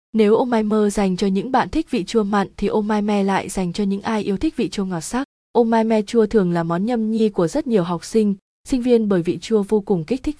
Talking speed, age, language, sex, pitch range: 290 wpm, 20-39, Vietnamese, female, 190-230 Hz